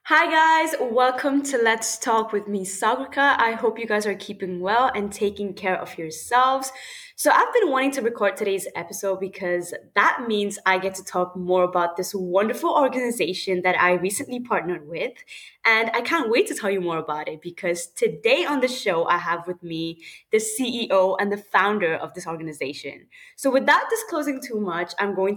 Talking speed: 190 wpm